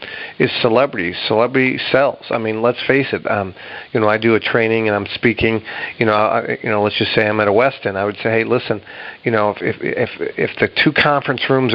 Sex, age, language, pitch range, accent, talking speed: male, 50-69, English, 115-135 Hz, American, 235 wpm